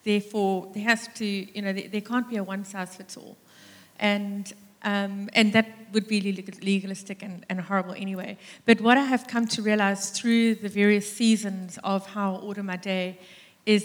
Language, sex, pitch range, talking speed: English, female, 195-220 Hz, 165 wpm